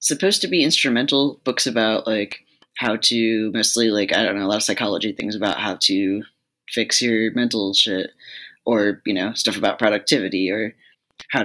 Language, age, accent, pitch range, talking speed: English, 10-29, American, 110-135 Hz, 180 wpm